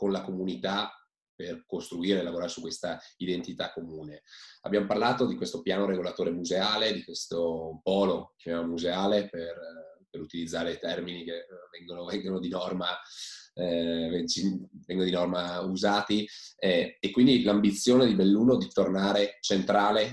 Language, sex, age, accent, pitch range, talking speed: Italian, male, 20-39, native, 90-105 Hz, 130 wpm